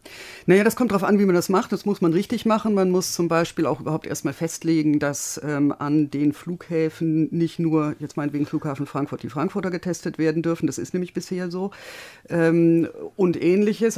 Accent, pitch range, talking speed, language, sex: German, 155-195 Hz, 195 wpm, German, female